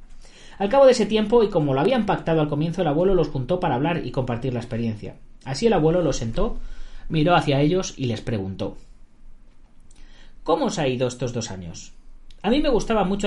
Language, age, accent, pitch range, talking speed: Spanish, 30-49, Spanish, 130-190 Hz, 205 wpm